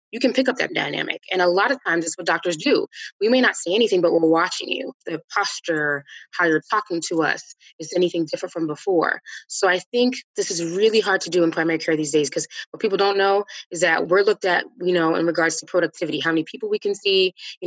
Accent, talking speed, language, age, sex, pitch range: American, 250 wpm, English, 20-39, female, 165-205 Hz